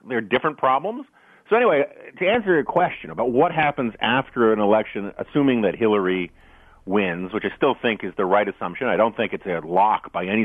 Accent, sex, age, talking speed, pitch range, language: American, male, 40-59, 200 wpm, 100-135 Hz, English